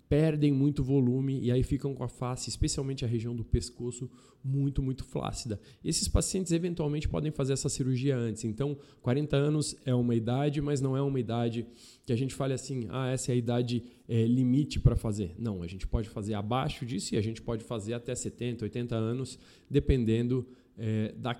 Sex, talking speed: male, 190 wpm